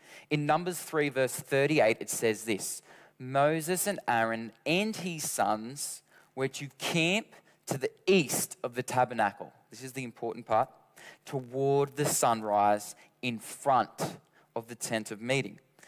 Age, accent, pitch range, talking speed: 20-39, Australian, 125-170 Hz, 145 wpm